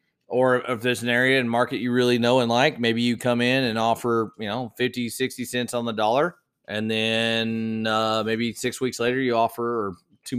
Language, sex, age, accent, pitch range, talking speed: English, male, 20-39, American, 110-125 Hz, 215 wpm